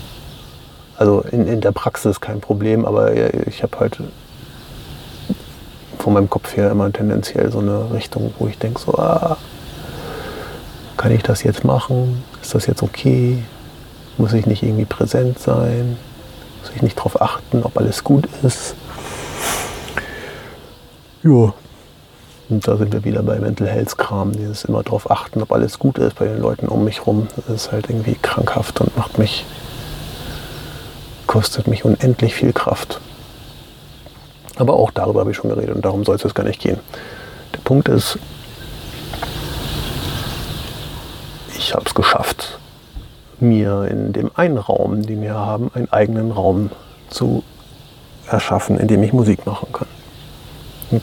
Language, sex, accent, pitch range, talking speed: German, male, German, 105-120 Hz, 150 wpm